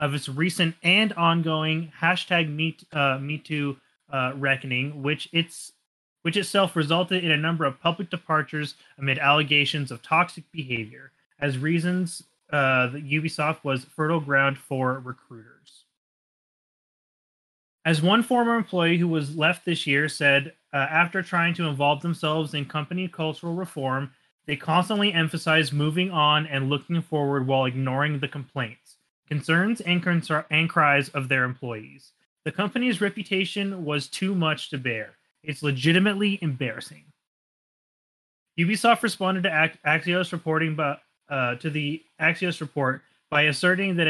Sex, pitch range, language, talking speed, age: male, 140-170 Hz, English, 135 wpm, 30-49